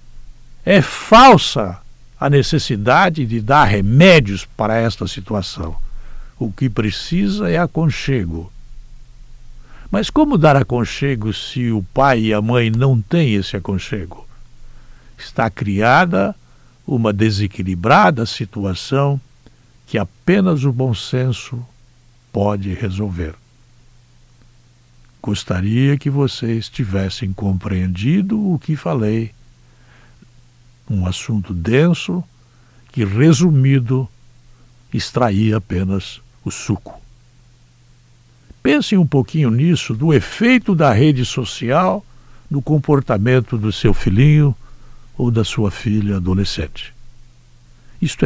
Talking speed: 95 wpm